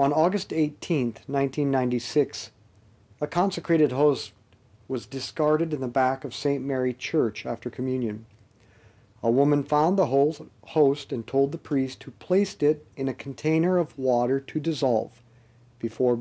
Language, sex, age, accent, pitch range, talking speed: English, male, 50-69, American, 120-155 Hz, 140 wpm